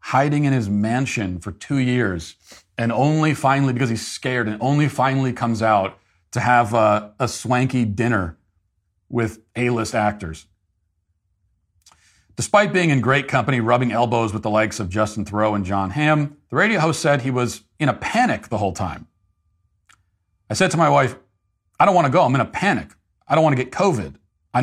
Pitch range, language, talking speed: 100-130 Hz, English, 185 wpm